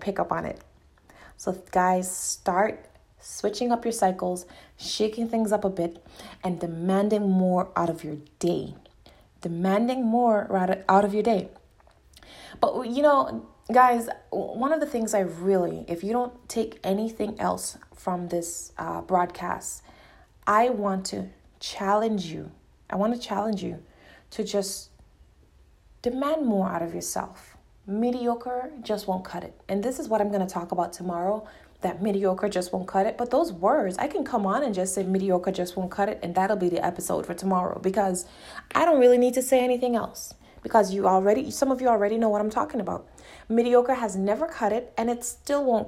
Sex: female